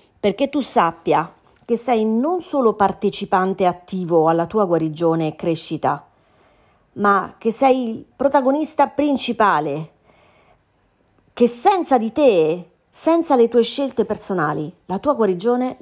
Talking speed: 120 wpm